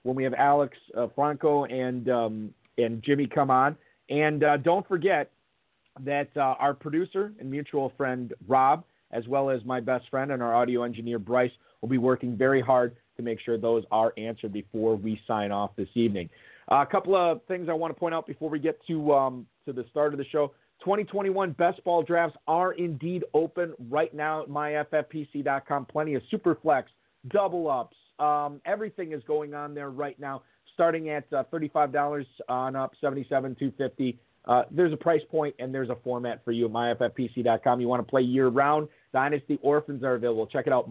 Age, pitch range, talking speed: 40-59, 130-155 Hz, 195 wpm